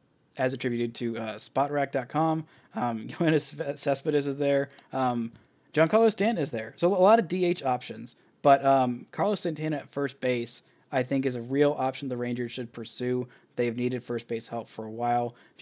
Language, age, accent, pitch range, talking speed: English, 20-39, American, 120-145 Hz, 175 wpm